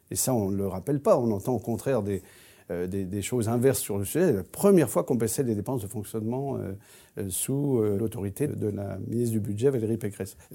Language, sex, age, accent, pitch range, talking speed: French, male, 50-69, French, 105-140 Hz, 230 wpm